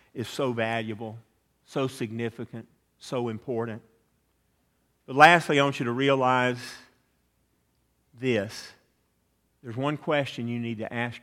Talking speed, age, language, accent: 120 wpm, 50-69, English, American